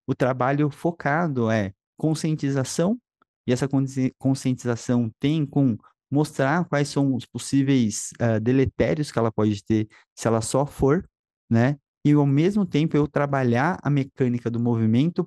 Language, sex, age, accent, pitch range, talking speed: Portuguese, male, 20-39, Brazilian, 115-140 Hz, 140 wpm